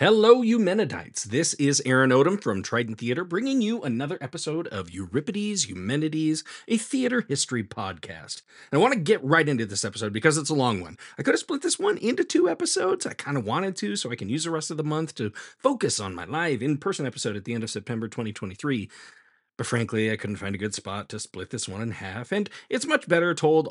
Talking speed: 225 wpm